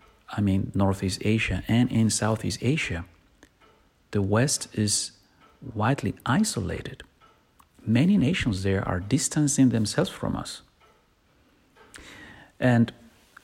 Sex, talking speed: male, 100 wpm